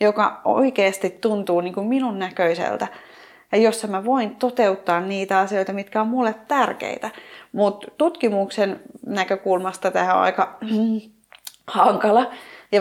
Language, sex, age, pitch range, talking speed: Finnish, female, 30-49, 175-220 Hz, 125 wpm